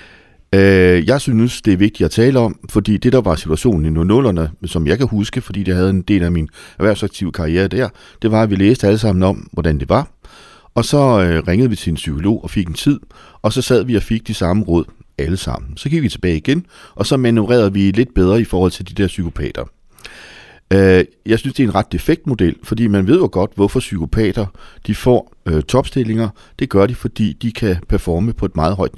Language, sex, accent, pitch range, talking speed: Danish, male, native, 90-120 Hz, 225 wpm